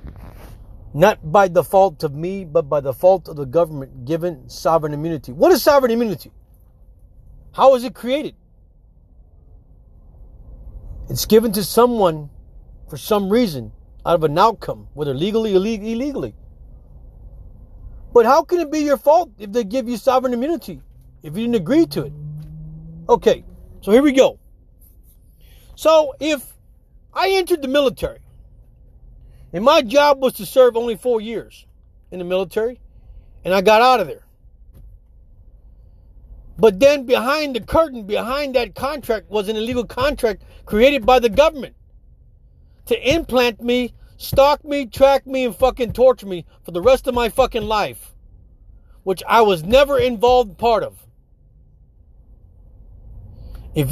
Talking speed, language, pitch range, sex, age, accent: 145 wpm, English, 155-260 Hz, male, 40-59, American